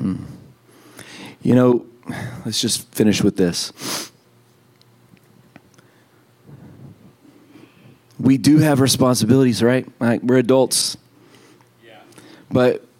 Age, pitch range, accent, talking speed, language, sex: 40-59, 100-125 Hz, American, 75 wpm, English, male